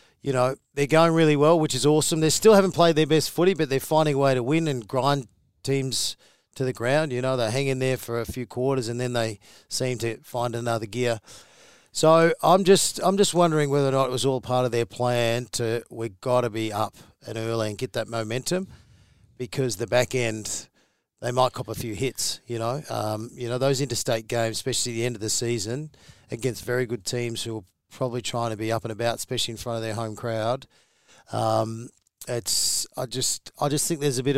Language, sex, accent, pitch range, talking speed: English, male, Australian, 115-135 Hz, 225 wpm